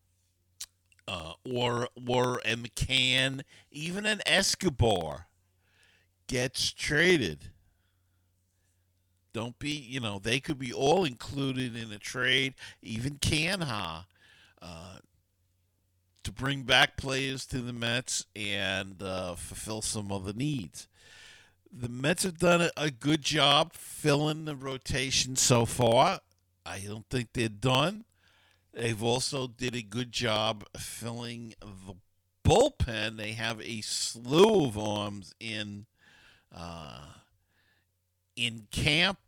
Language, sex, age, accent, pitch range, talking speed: English, male, 50-69, American, 95-130 Hz, 115 wpm